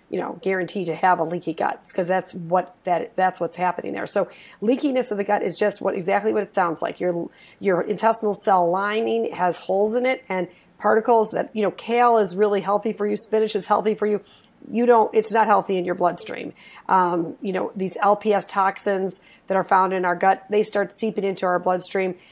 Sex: female